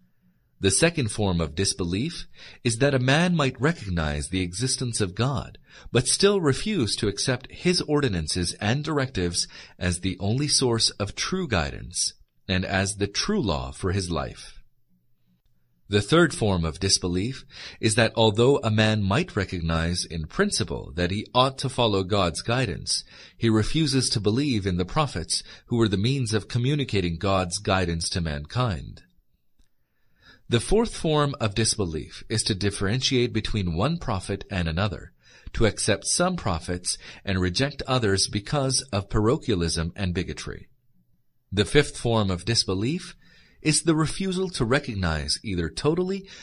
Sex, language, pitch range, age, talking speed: male, English, 90-135 Hz, 40-59, 145 wpm